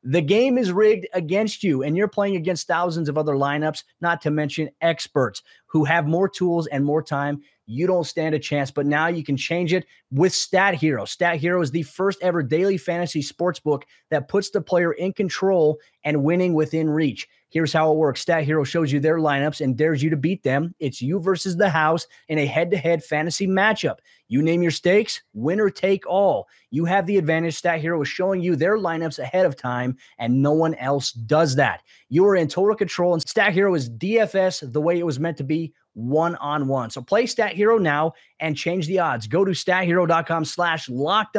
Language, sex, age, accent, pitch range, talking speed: English, male, 30-49, American, 150-185 Hz, 215 wpm